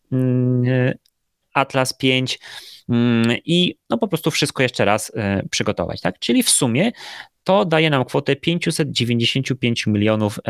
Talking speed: 115 wpm